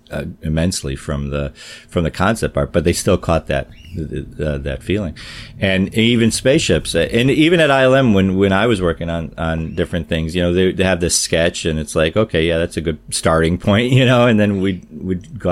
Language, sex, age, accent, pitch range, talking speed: English, male, 40-59, American, 80-105 Hz, 220 wpm